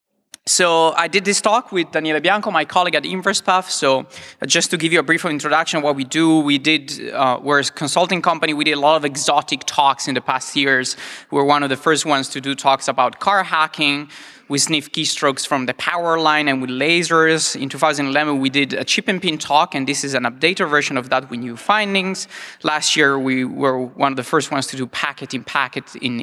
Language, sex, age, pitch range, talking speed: English, male, 20-39, 135-170 Hz, 230 wpm